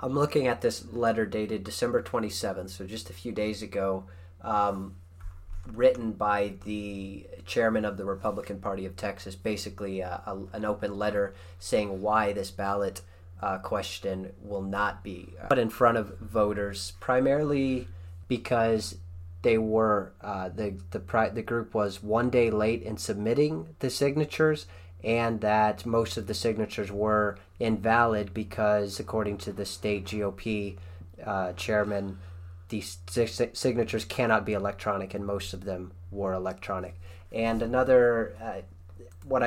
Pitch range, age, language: 95-110 Hz, 30-49, English